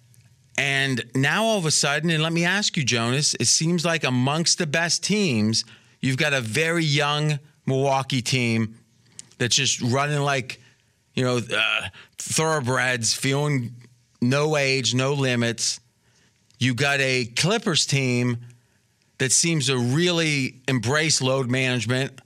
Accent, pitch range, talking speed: American, 125-160 Hz, 135 wpm